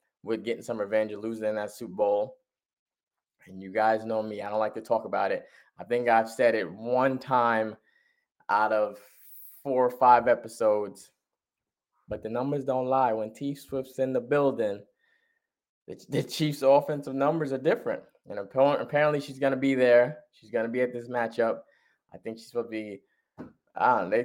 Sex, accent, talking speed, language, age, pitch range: male, American, 180 wpm, English, 20-39, 115-150 Hz